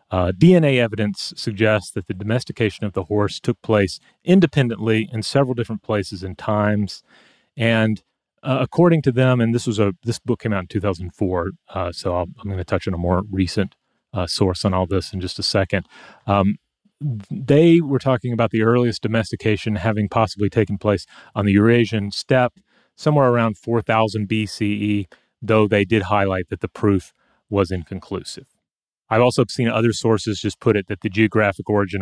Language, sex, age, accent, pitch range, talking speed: English, male, 30-49, American, 100-115 Hz, 180 wpm